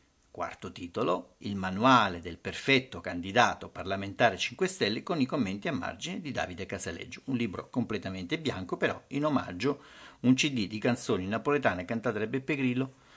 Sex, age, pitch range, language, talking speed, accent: male, 50-69, 100-145 Hz, Italian, 155 wpm, native